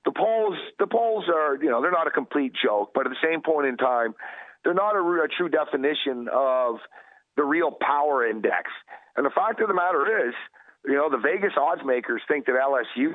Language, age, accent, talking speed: English, 50-69, American, 210 wpm